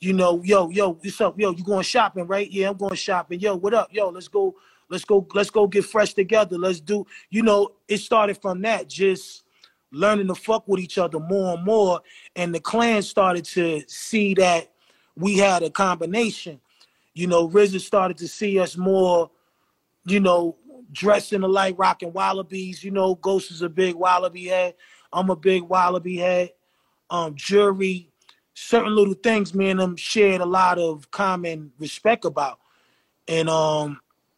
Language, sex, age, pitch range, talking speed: English, male, 20-39, 175-195 Hz, 175 wpm